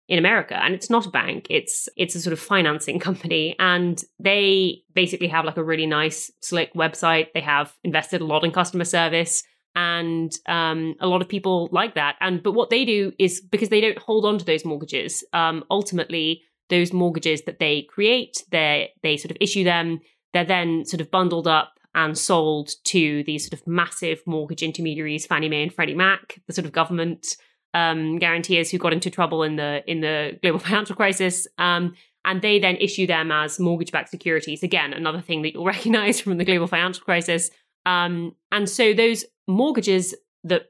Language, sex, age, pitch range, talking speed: English, female, 20-39, 160-190 Hz, 195 wpm